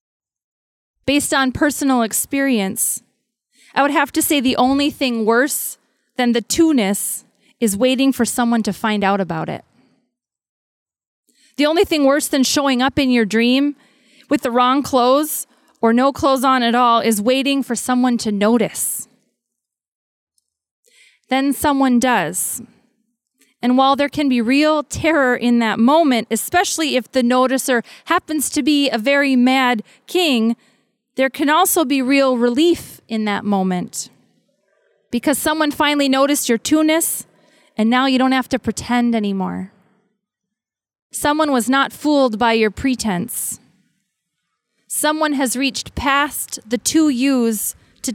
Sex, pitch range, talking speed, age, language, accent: female, 230-285 Hz, 140 wpm, 20-39, English, American